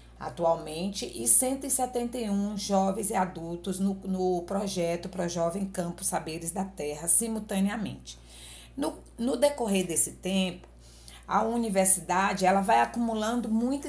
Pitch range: 160-200 Hz